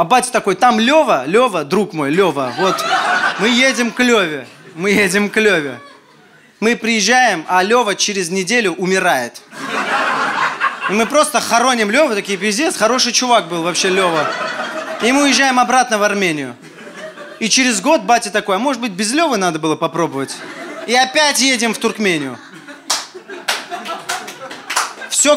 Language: Russian